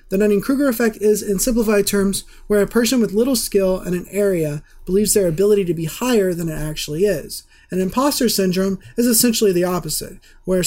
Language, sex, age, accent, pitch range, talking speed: English, male, 30-49, American, 170-210 Hz, 195 wpm